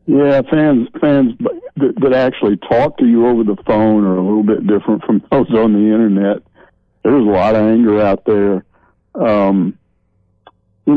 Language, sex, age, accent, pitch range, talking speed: English, male, 60-79, American, 95-115 Hz, 170 wpm